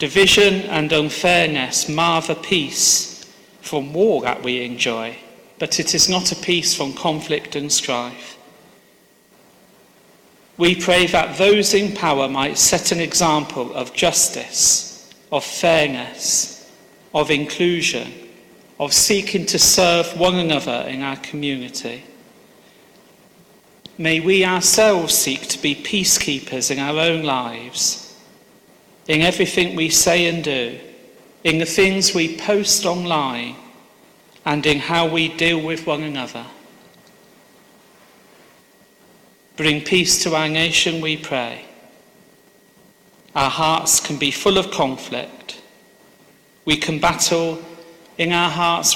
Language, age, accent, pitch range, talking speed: English, 40-59, British, 150-180 Hz, 120 wpm